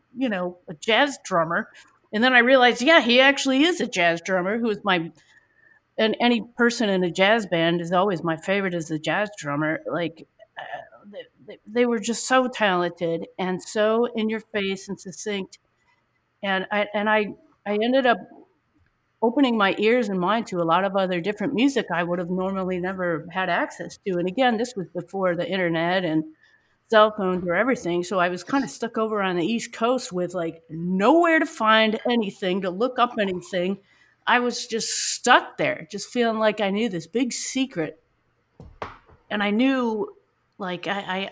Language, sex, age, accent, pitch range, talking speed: English, female, 50-69, American, 175-230 Hz, 185 wpm